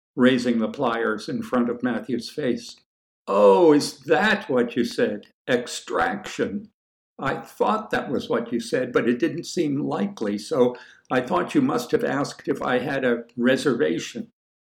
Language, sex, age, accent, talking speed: English, male, 60-79, American, 160 wpm